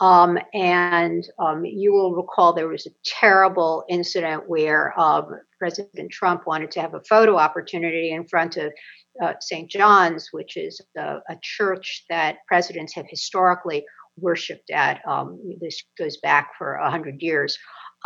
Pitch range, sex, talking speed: 170-220 Hz, female, 155 wpm